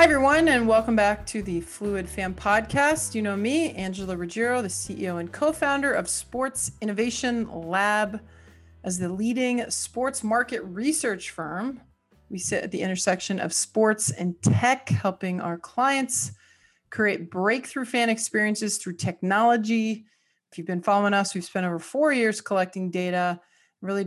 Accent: American